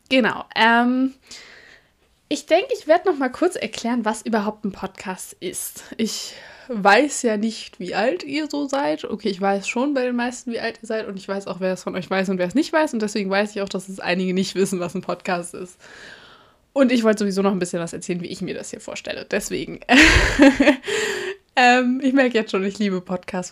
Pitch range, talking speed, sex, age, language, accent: 195-260 Hz, 220 wpm, female, 20-39, German, German